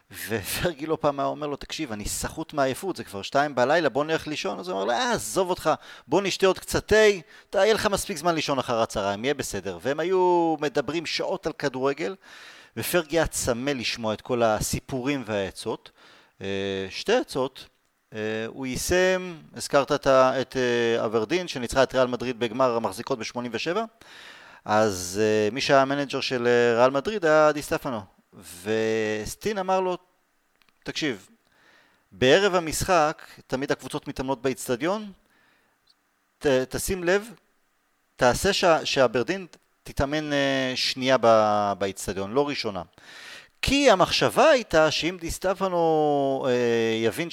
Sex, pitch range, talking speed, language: male, 120-170 Hz, 130 wpm, Hebrew